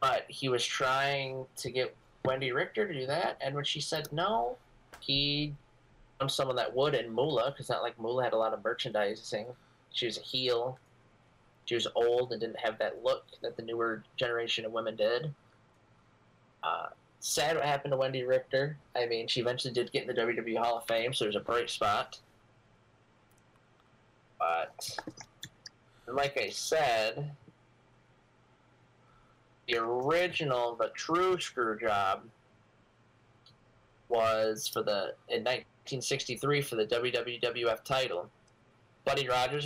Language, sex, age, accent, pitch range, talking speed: English, male, 20-39, American, 115-135 Hz, 145 wpm